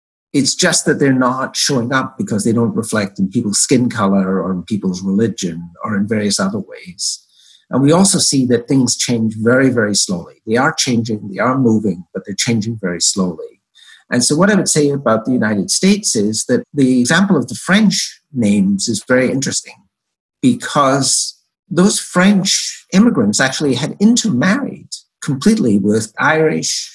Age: 60-79